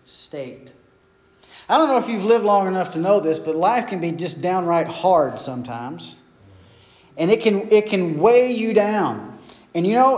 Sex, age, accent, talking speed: male, 40-59, American, 185 wpm